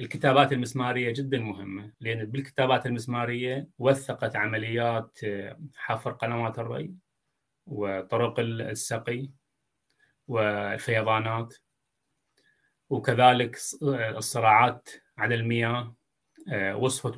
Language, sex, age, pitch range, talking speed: Arabic, male, 30-49, 110-135 Hz, 70 wpm